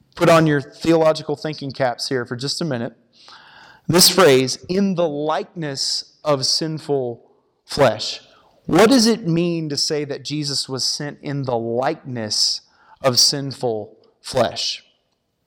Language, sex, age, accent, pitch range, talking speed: English, male, 30-49, American, 130-170 Hz, 135 wpm